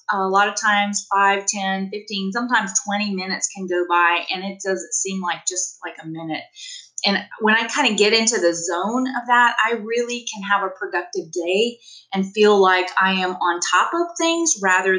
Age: 30-49